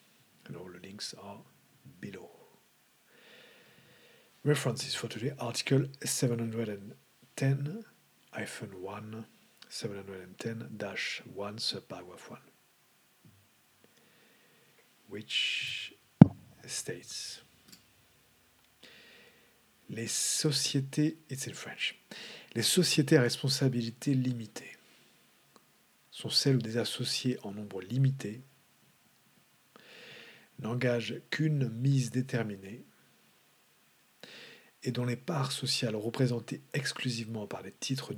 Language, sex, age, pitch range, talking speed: English, male, 50-69, 110-135 Hz, 70 wpm